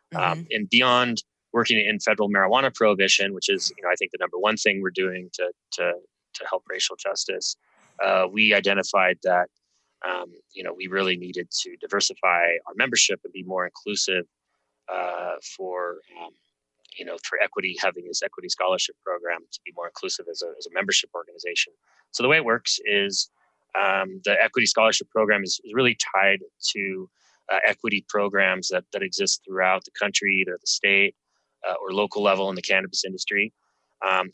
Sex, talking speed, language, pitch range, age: male, 180 wpm, English, 95-115 Hz, 30-49